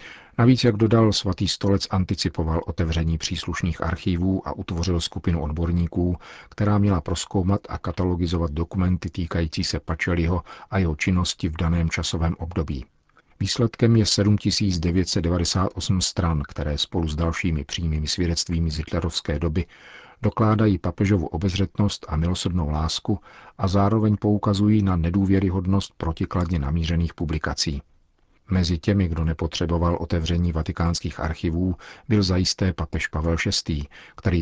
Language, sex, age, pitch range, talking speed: Czech, male, 50-69, 80-95 Hz, 120 wpm